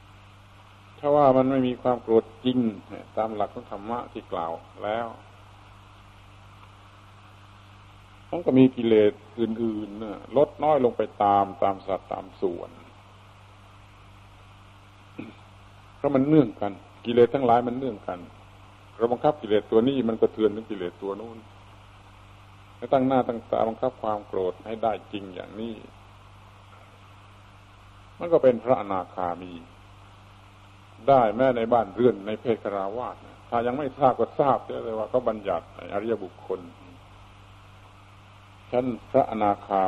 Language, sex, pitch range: Thai, male, 100-110 Hz